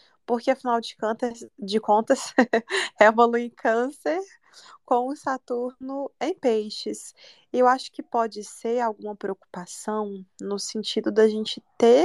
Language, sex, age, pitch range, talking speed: Portuguese, female, 20-39, 205-245 Hz, 135 wpm